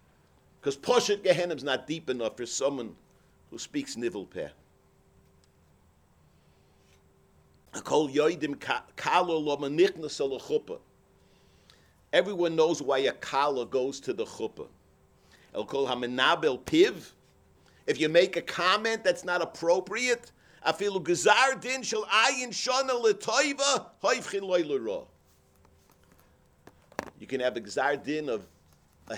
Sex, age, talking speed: male, 50-69, 75 wpm